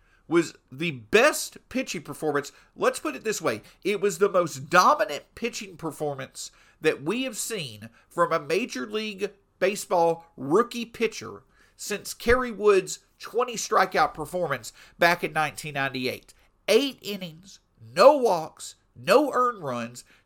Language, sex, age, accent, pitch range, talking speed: English, male, 50-69, American, 155-235 Hz, 125 wpm